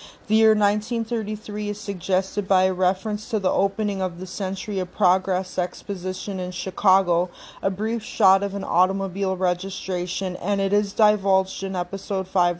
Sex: female